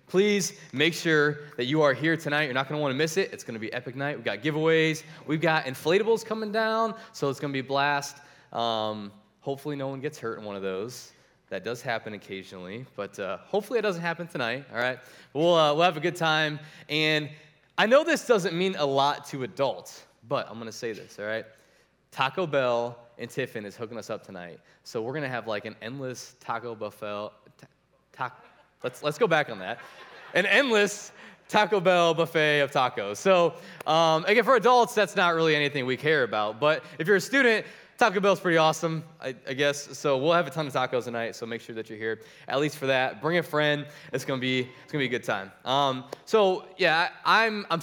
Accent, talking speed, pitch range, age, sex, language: American, 225 wpm, 130-175 Hz, 20-39, male, English